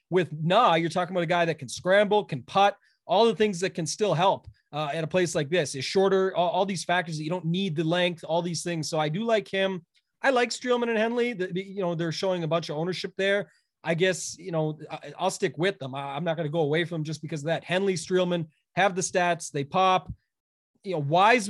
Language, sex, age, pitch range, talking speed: English, male, 30-49, 165-190 Hz, 255 wpm